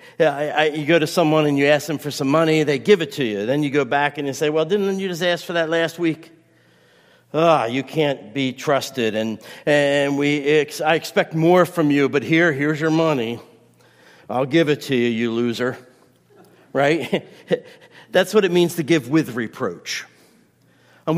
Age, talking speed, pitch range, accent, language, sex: 50-69, 205 wpm, 145-195 Hz, American, English, male